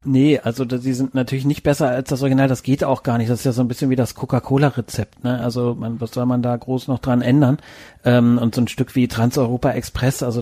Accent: German